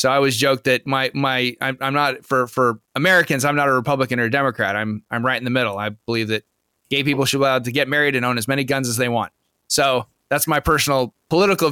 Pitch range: 130-165 Hz